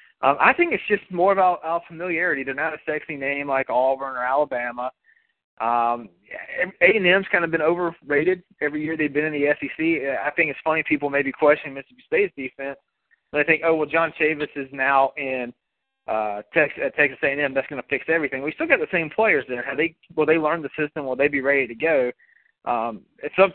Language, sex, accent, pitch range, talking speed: English, male, American, 135-170 Hz, 215 wpm